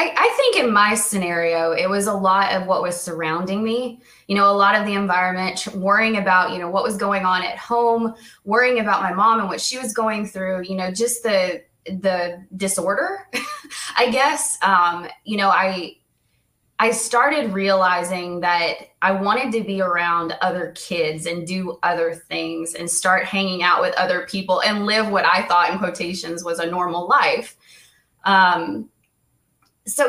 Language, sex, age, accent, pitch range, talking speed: English, female, 20-39, American, 180-225 Hz, 175 wpm